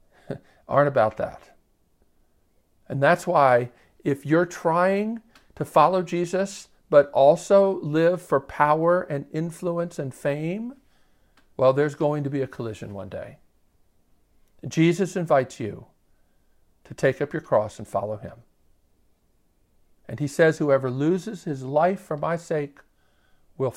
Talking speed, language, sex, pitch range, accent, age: 130 wpm, English, male, 110-155 Hz, American, 50-69